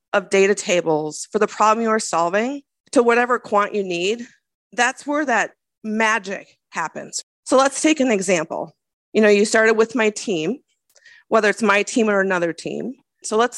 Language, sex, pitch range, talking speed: English, female, 175-220 Hz, 175 wpm